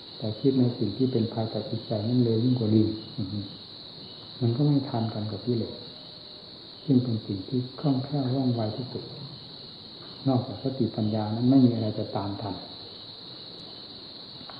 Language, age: Thai, 60-79